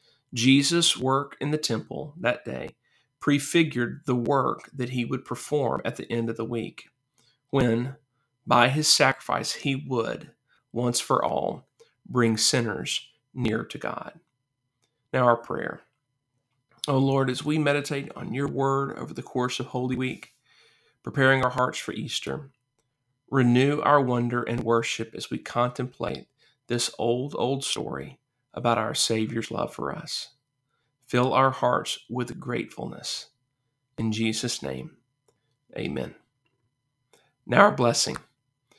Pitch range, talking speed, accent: 120-140 Hz, 135 wpm, American